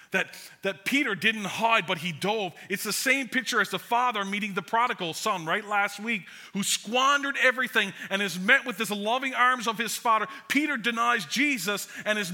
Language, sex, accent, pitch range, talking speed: English, male, American, 170-235 Hz, 195 wpm